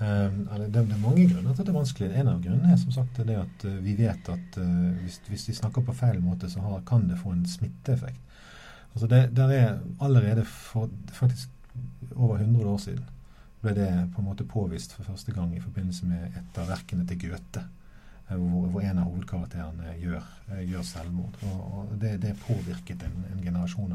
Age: 50-69